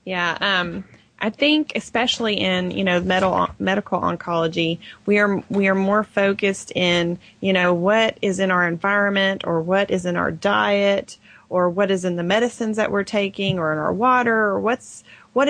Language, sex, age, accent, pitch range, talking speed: English, female, 30-49, American, 175-205 Hz, 185 wpm